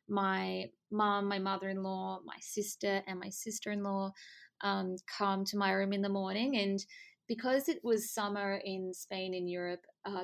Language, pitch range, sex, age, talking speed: English, 195-235 Hz, female, 20-39, 160 wpm